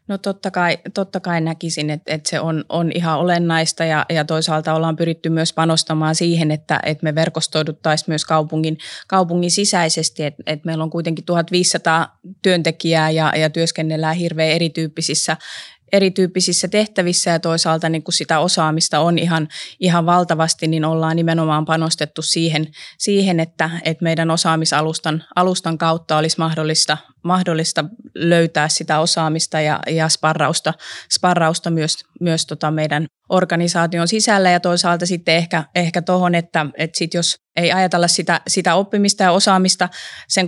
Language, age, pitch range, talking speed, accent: Finnish, 20-39, 160-175 Hz, 145 wpm, native